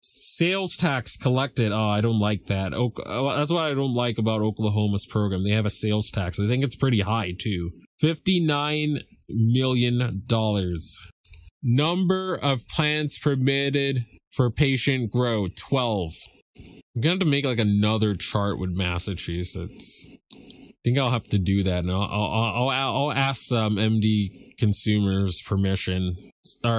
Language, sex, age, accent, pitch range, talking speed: English, male, 20-39, American, 105-135 Hz, 150 wpm